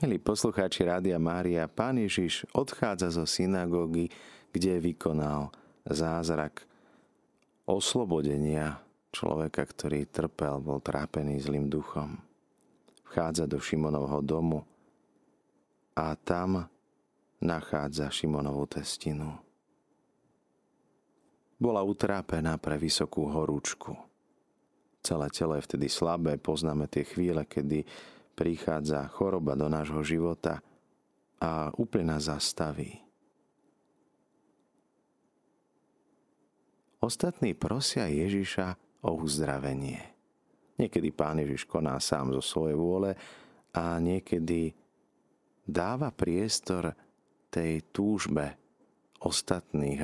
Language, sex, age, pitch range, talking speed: Slovak, male, 30-49, 75-90 Hz, 85 wpm